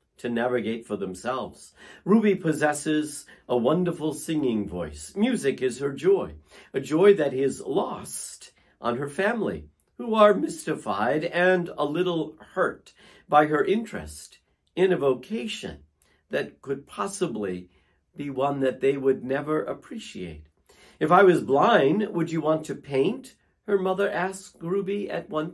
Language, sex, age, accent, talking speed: English, male, 50-69, American, 140 wpm